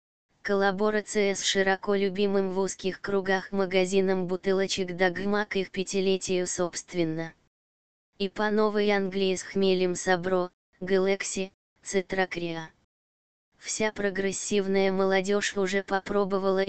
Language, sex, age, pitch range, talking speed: Russian, female, 20-39, 180-195 Hz, 95 wpm